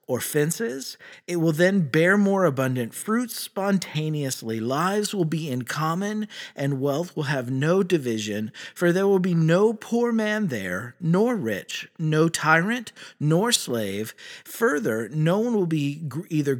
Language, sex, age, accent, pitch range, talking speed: English, male, 50-69, American, 135-195 Hz, 150 wpm